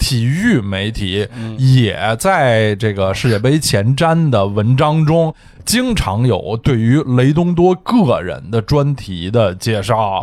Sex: male